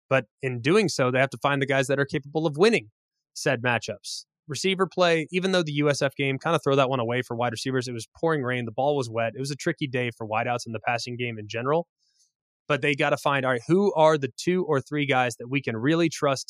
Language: English